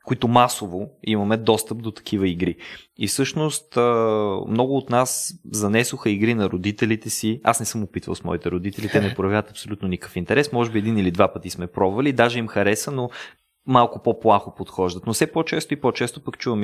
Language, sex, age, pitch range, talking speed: Bulgarian, male, 20-39, 105-125 Hz, 190 wpm